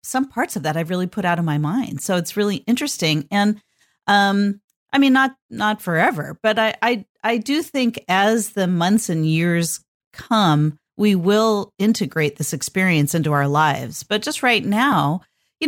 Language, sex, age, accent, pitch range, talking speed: English, female, 40-59, American, 165-220 Hz, 180 wpm